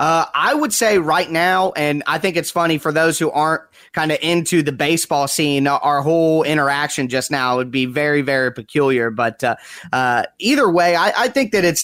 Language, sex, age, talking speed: English, male, 20-39, 210 wpm